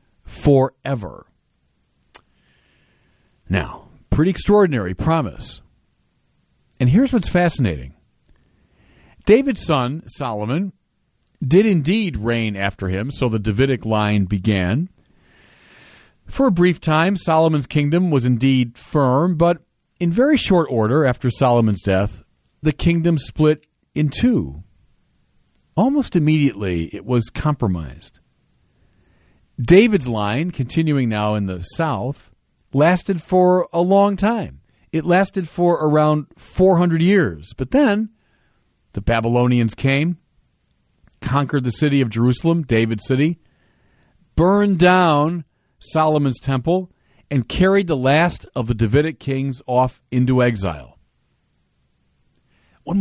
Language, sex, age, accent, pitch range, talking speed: English, male, 50-69, American, 110-170 Hz, 110 wpm